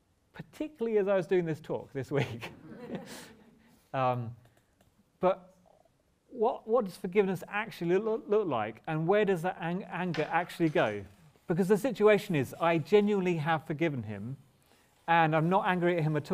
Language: English